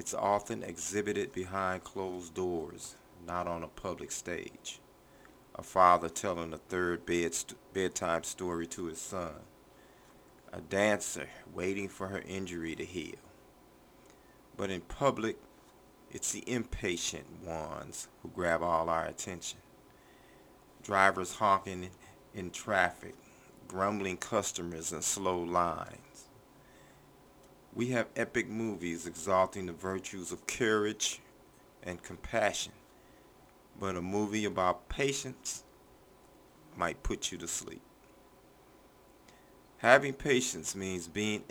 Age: 40-59